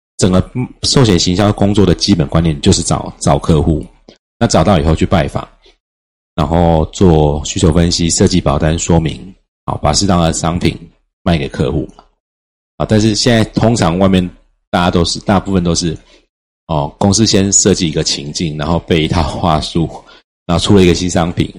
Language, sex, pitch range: Chinese, male, 80-100 Hz